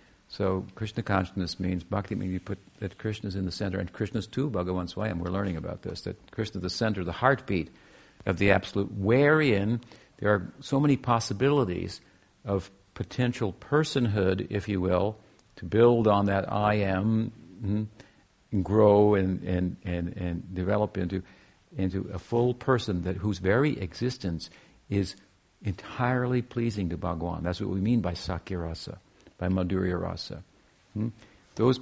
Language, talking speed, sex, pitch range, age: English, 155 wpm, male, 95-115 Hz, 50-69